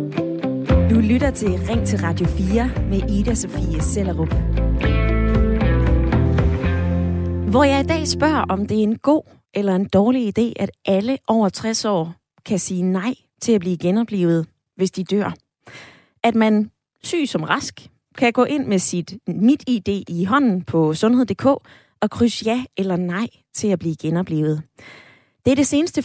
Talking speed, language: 150 wpm, Danish